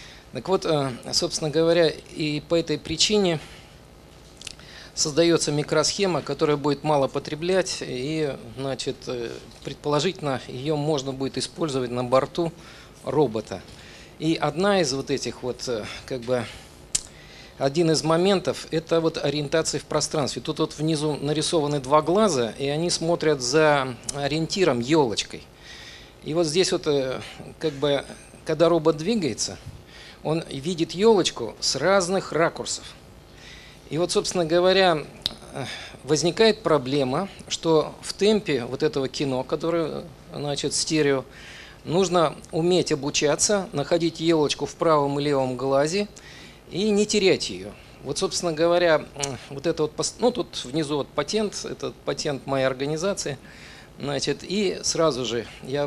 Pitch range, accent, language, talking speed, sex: 135-170 Hz, native, Russian, 125 wpm, male